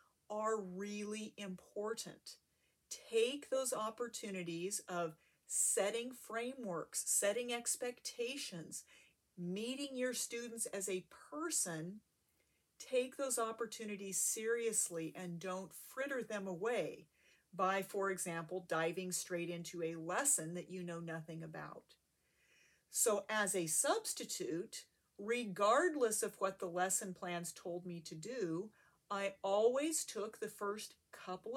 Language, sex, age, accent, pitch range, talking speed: English, female, 40-59, American, 180-245 Hz, 110 wpm